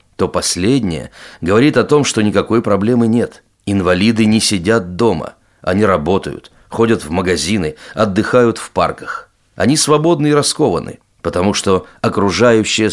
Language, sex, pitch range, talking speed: Russian, male, 90-120 Hz, 130 wpm